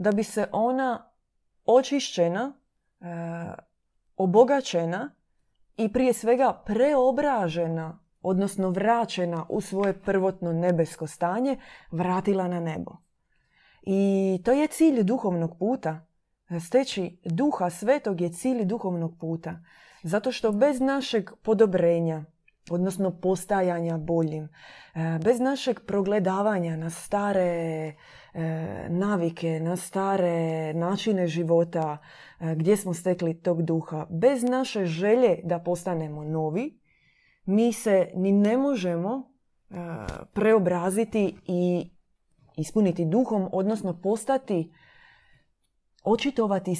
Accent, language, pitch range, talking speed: native, Croatian, 170-220 Hz, 95 wpm